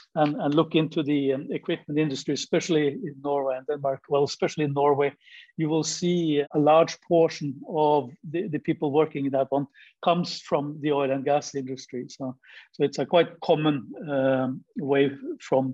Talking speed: 180 wpm